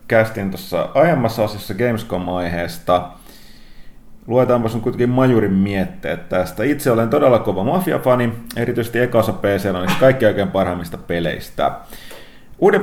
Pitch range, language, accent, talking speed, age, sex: 90-120 Hz, Finnish, native, 120 wpm, 30-49, male